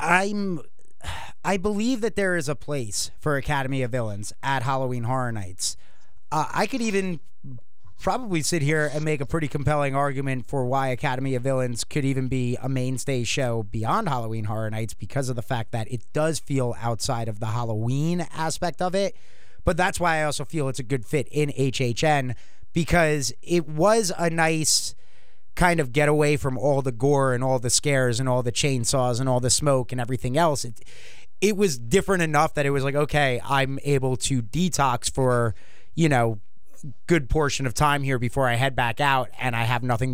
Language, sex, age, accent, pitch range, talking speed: English, male, 30-49, American, 125-155 Hz, 195 wpm